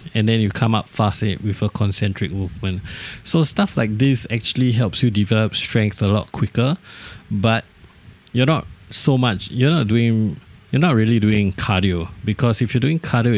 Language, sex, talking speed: English, male, 180 wpm